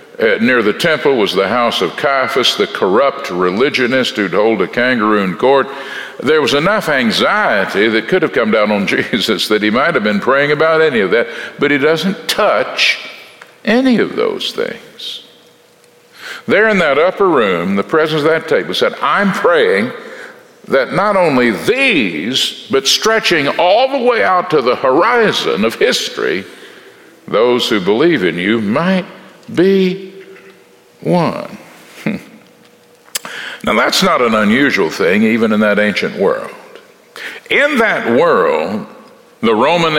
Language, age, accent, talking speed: English, 60-79, American, 150 wpm